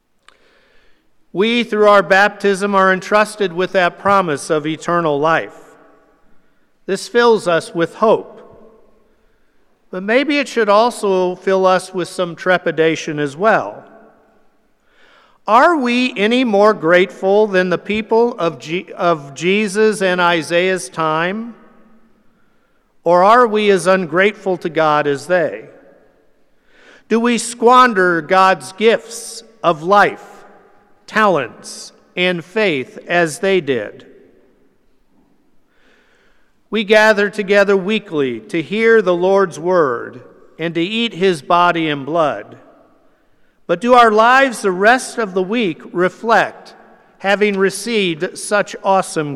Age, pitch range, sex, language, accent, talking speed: 50-69, 175-220 Hz, male, English, American, 115 wpm